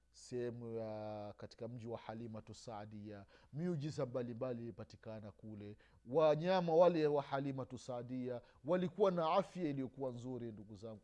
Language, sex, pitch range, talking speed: Swahili, male, 110-170 Hz, 135 wpm